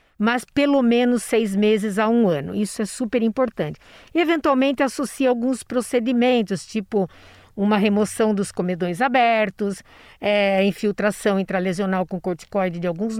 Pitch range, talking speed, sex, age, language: 200-245 Hz, 125 wpm, female, 50-69, Portuguese